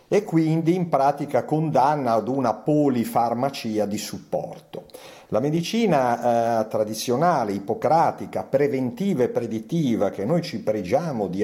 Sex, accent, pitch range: male, native, 115-175 Hz